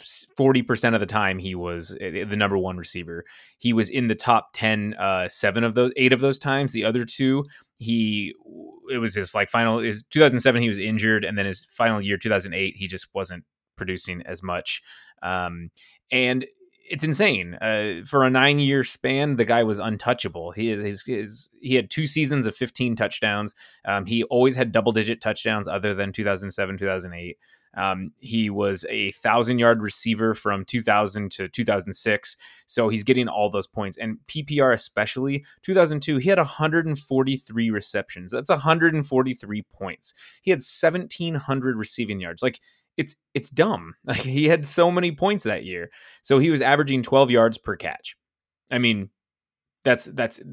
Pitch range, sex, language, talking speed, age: 100-135 Hz, male, English, 165 wpm, 20-39